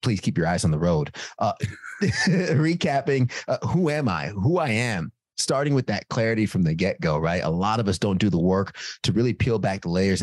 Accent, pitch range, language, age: American, 90-115 Hz, English, 30-49